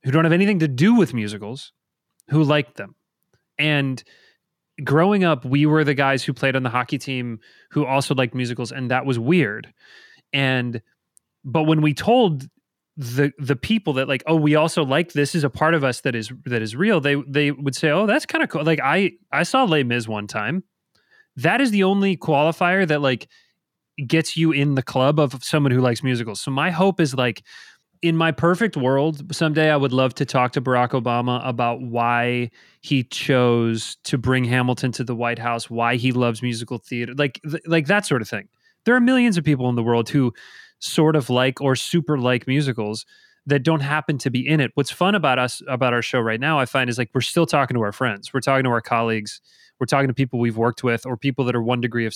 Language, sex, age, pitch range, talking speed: English, male, 30-49, 125-160 Hz, 220 wpm